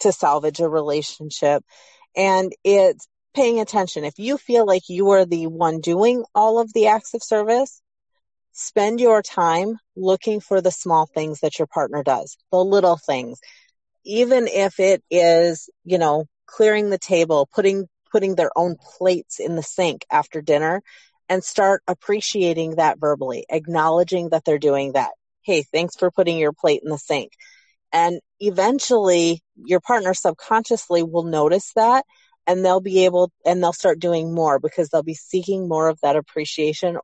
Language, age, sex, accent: English, 30-49, female, American